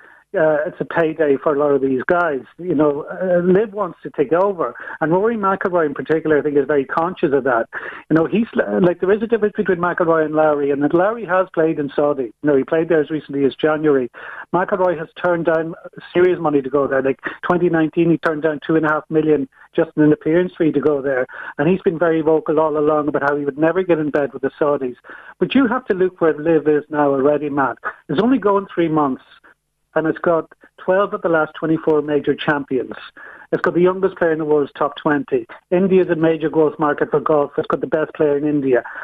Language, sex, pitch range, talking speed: English, male, 150-180 Hz, 230 wpm